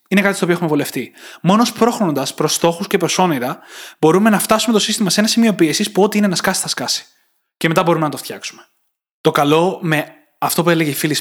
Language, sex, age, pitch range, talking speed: Greek, male, 20-39, 145-190 Hz, 230 wpm